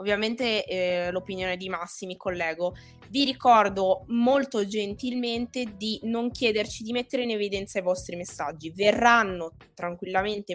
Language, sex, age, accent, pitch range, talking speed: Italian, female, 20-39, native, 195-270 Hz, 130 wpm